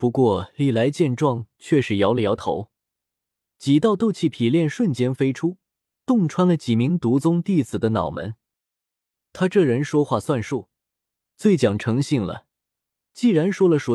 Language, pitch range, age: Chinese, 115-165 Hz, 20-39